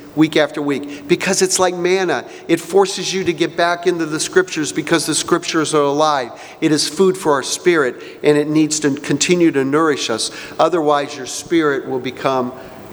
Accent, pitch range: American, 155-215 Hz